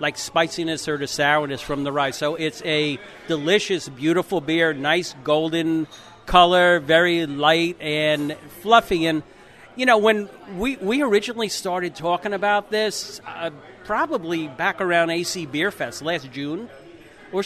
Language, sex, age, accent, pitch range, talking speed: English, male, 50-69, American, 155-190 Hz, 145 wpm